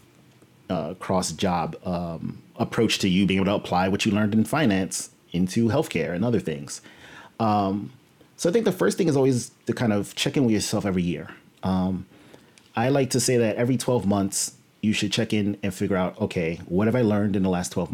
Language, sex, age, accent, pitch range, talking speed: English, male, 30-49, American, 95-115 Hz, 210 wpm